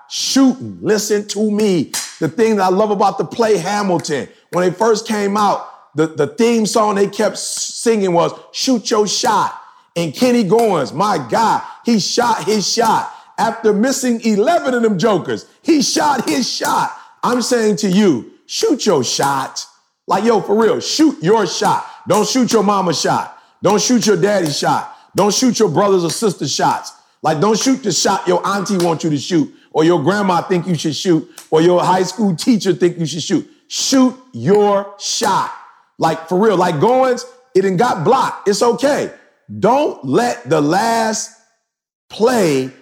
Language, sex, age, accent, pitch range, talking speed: English, male, 40-59, American, 185-245 Hz, 175 wpm